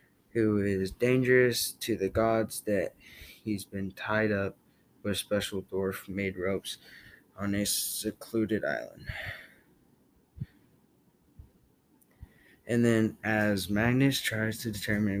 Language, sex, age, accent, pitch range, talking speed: English, male, 20-39, American, 100-115 Hz, 110 wpm